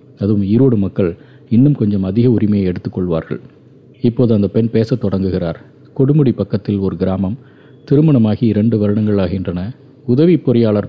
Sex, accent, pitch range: male, native, 100-130 Hz